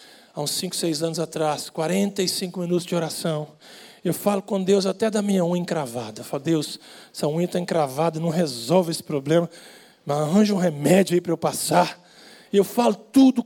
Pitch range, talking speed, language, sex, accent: 170-235 Hz, 185 wpm, Portuguese, male, Brazilian